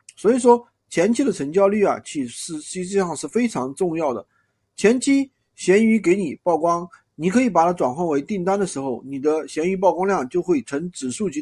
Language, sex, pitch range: Chinese, male, 165-230 Hz